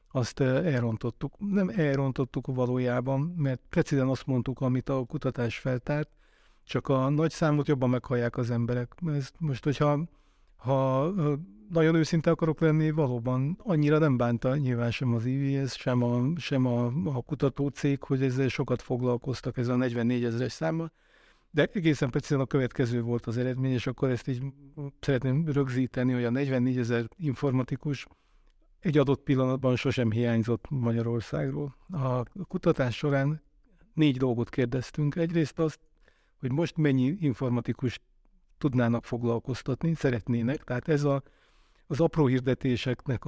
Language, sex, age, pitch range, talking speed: Hungarian, male, 50-69, 125-145 Hz, 135 wpm